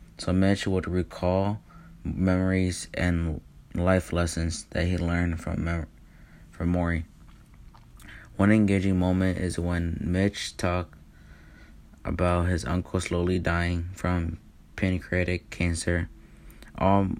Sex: male